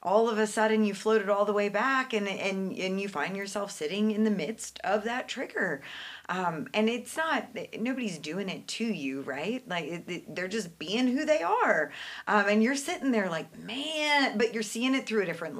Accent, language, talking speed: American, English, 215 wpm